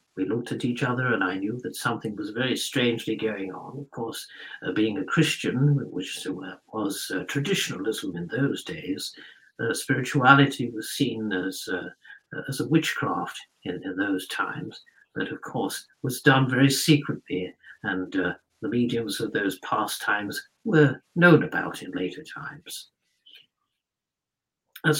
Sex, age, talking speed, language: male, 60-79, 150 wpm, English